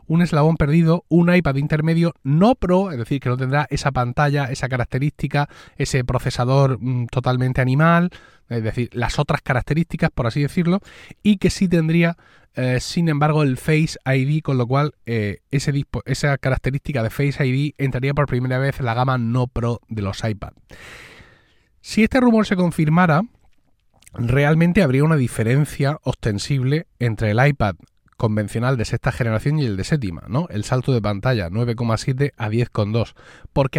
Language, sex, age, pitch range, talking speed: Spanish, male, 30-49, 120-155 Hz, 165 wpm